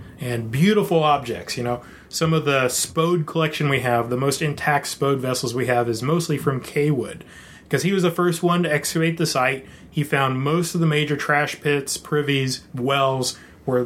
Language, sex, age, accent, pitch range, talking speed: English, male, 30-49, American, 125-160 Hz, 190 wpm